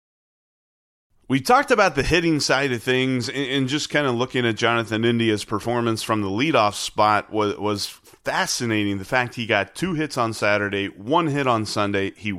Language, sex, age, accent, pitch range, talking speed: English, male, 30-49, American, 110-140 Hz, 180 wpm